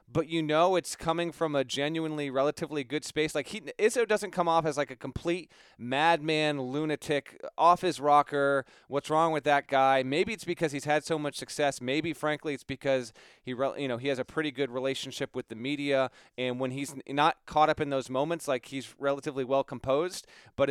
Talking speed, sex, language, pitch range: 205 wpm, male, English, 135-170 Hz